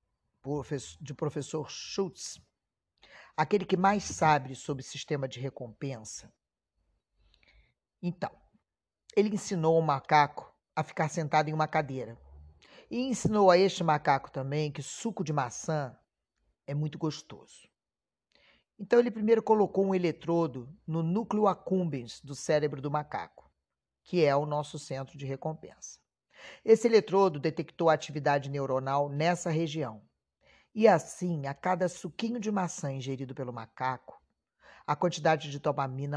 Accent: Brazilian